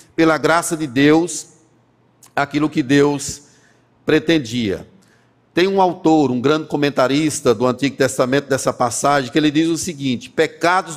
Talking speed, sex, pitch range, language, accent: 135 wpm, male, 150-185 Hz, Portuguese, Brazilian